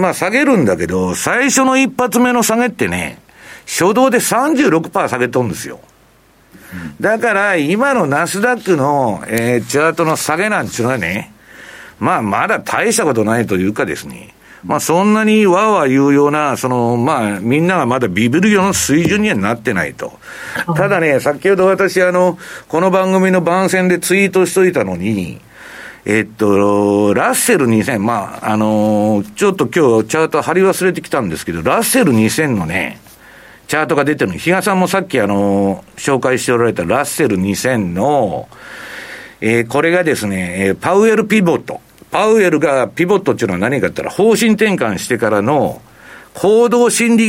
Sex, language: male, Japanese